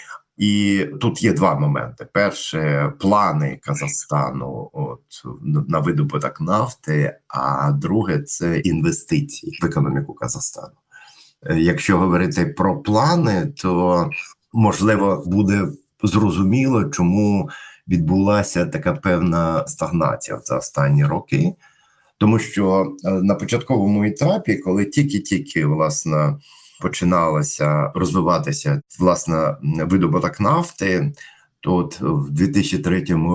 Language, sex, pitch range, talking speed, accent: Ukrainian, male, 85-145 Hz, 95 wpm, native